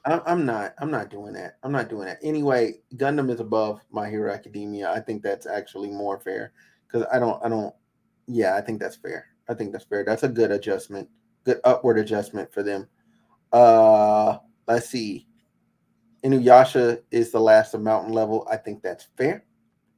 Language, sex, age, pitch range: English, male, 30-49, 110-135 Hz